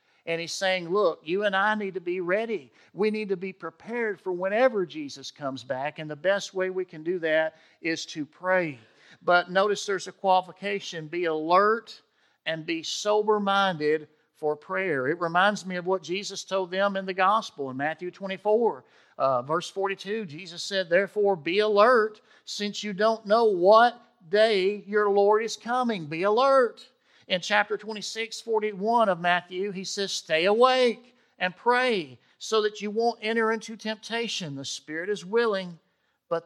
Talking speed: 170 wpm